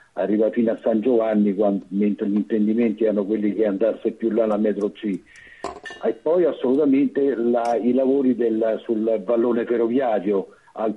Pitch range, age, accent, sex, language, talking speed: 115-135 Hz, 50-69, native, male, Italian, 155 wpm